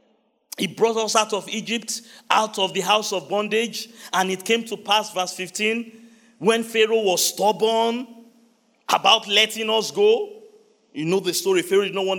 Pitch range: 190-235 Hz